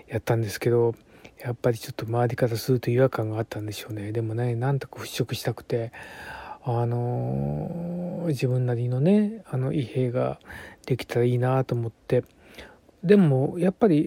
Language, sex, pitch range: Japanese, male, 120-165 Hz